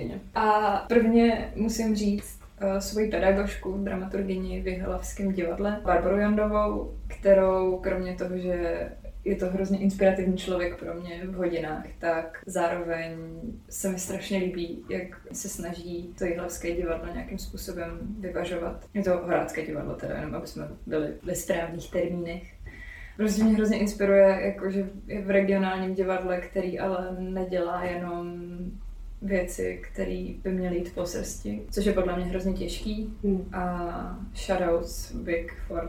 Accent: native